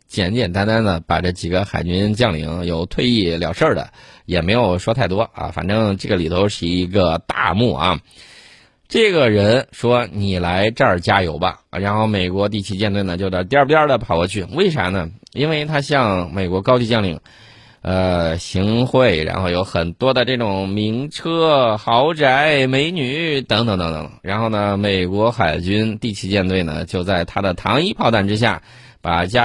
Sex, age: male, 20-39